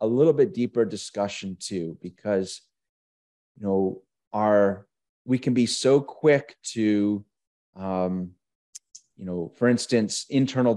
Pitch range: 100-130 Hz